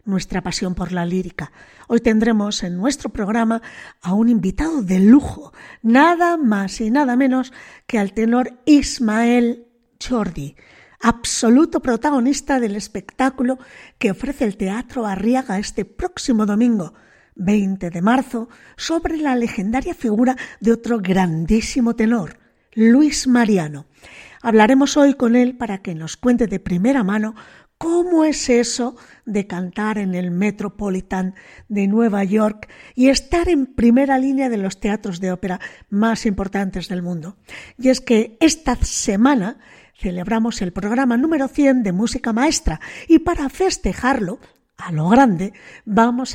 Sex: female